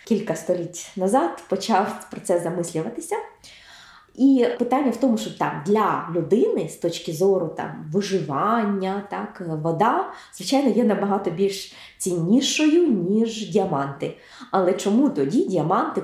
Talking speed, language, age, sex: 120 wpm, Ukrainian, 20-39, female